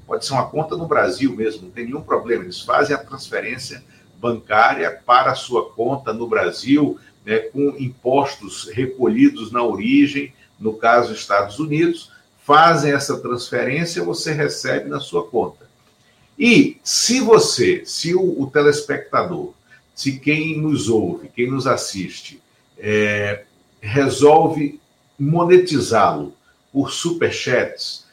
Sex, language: male, Portuguese